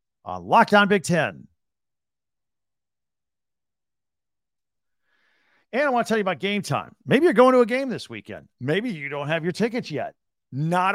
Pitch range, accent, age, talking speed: 135-190 Hz, American, 50-69, 160 wpm